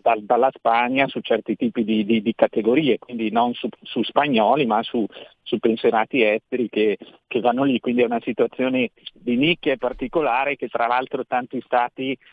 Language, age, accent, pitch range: Italian, 50-69, native, 125-170 Hz